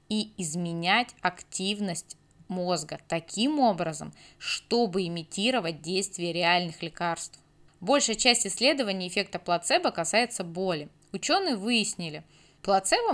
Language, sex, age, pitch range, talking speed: Russian, female, 20-39, 170-220 Hz, 95 wpm